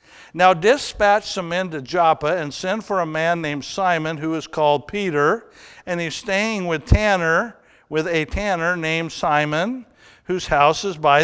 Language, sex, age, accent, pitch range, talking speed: English, male, 60-79, American, 155-185 Hz, 165 wpm